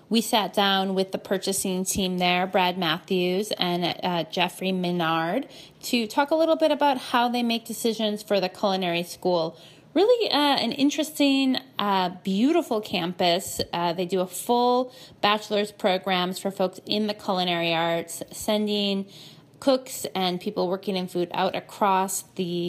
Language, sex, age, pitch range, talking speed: English, female, 20-39, 175-215 Hz, 155 wpm